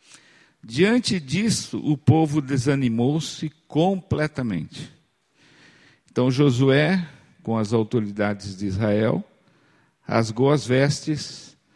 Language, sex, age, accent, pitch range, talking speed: Portuguese, male, 50-69, Brazilian, 120-160 Hz, 80 wpm